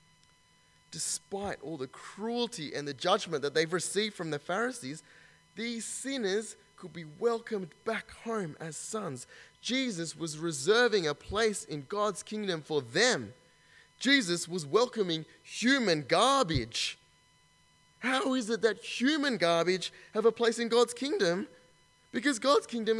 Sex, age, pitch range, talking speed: male, 20-39, 130-220 Hz, 135 wpm